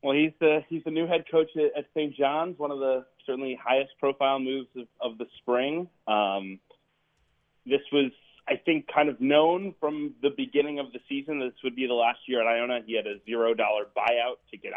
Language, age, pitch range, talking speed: English, 30-49, 110-135 Hz, 205 wpm